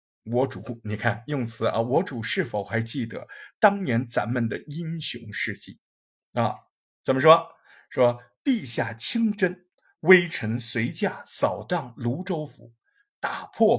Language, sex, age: Chinese, male, 50-69